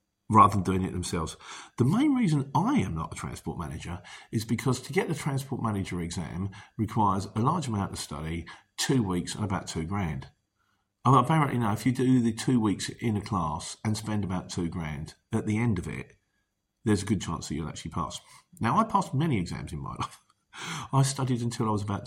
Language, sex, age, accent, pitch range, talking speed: English, male, 40-59, British, 95-130 Hz, 210 wpm